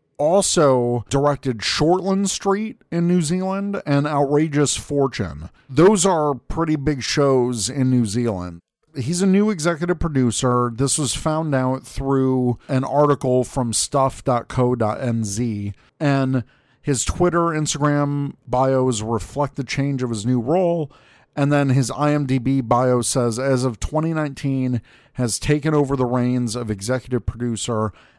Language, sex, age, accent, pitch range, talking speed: English, male, 50-69, American, 120-150 Hz, 130 wpm